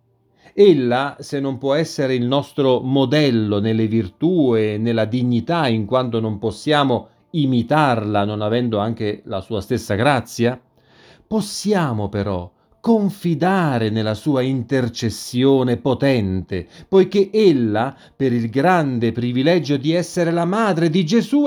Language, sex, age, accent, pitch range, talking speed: Italian, male, 40-59, native, 120-185 Hz, 125 wpm